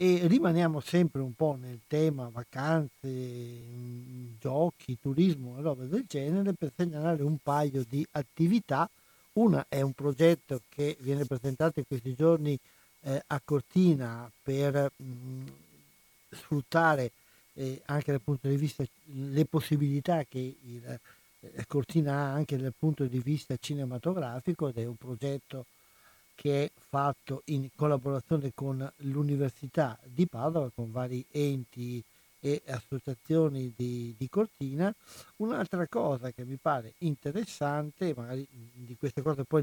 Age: 60-79